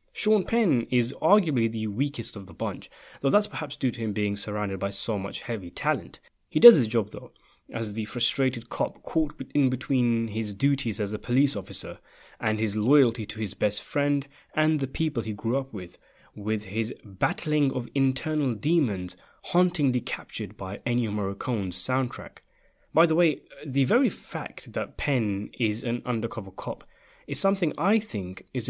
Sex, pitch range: male, 110-140 Hz